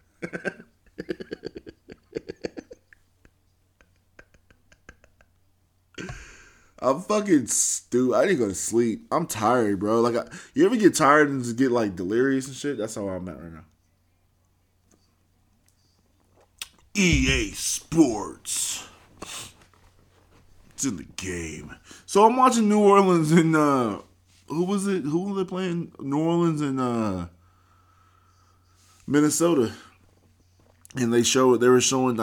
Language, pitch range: English, 90-120 Hz